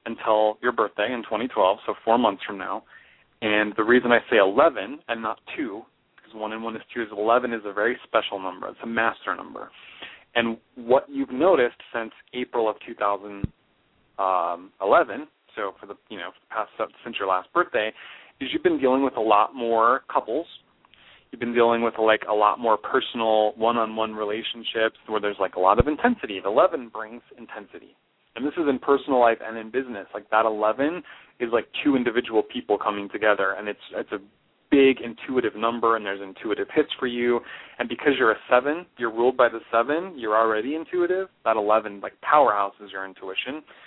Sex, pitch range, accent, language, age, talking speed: male, 105-125 Hz, American, English, 30-49, 190 wpm